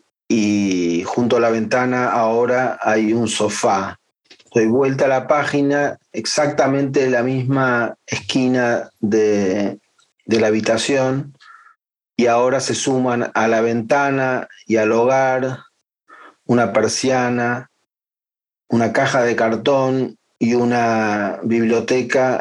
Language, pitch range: Spanish, 110-130 Hz